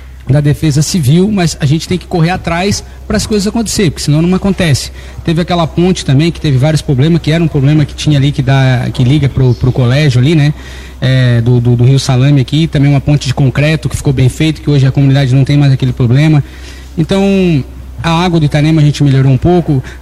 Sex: male